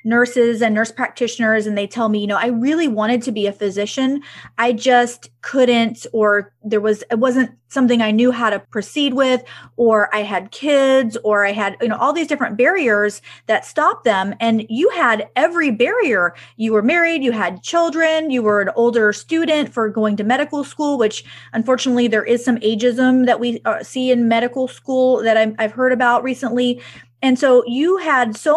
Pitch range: 225-285 Hz